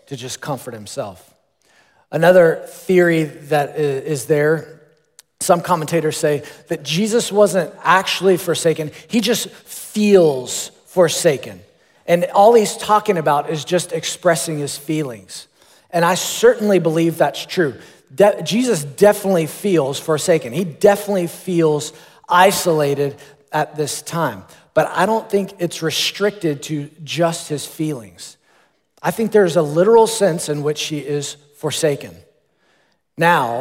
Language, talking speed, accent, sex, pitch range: English, 125 wpm, American, male, 145-180 Hz